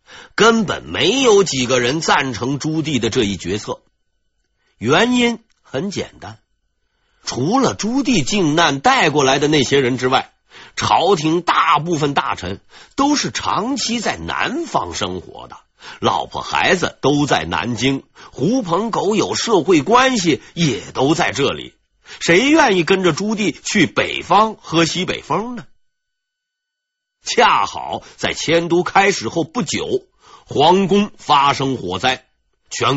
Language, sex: Chinese, male